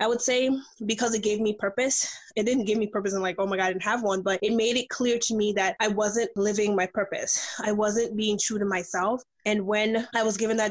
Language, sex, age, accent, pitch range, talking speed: English, female, 20-39, American, 195-225 Hz, 265 wpm